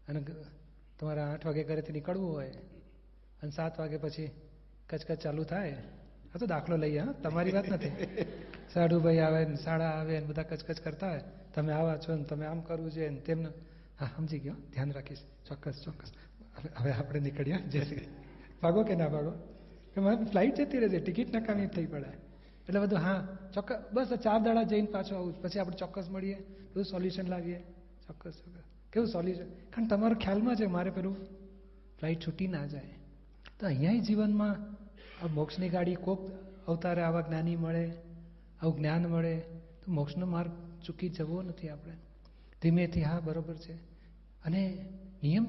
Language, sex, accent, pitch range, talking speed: Gujarati, male, native, 160-190 Hz, 160 wpm